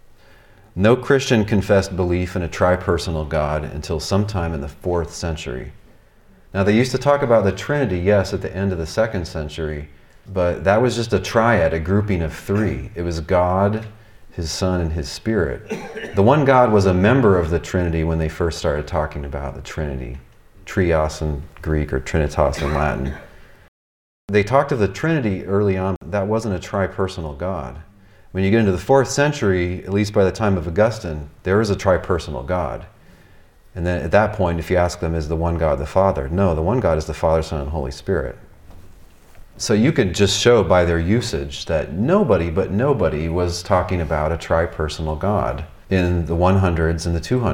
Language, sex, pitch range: English, male, 80-100 Hz